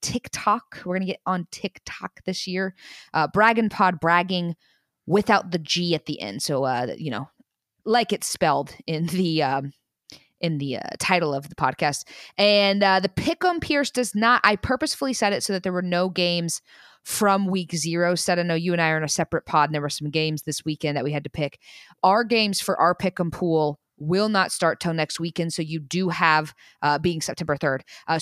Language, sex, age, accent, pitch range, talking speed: English, female, 20-39, American, 160-200 Hz, 210 wpm